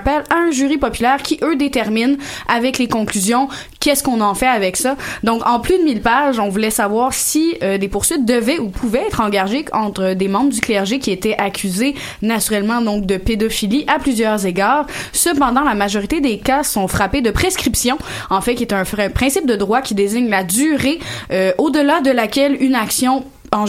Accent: Canadian